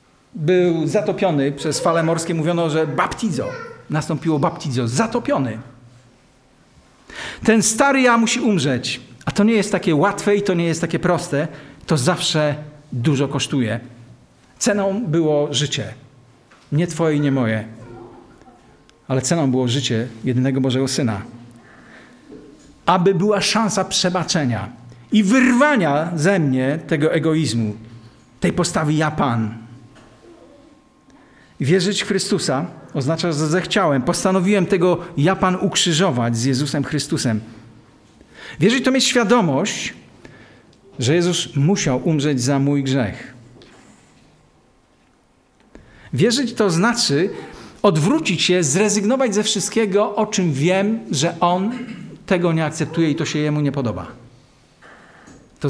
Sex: male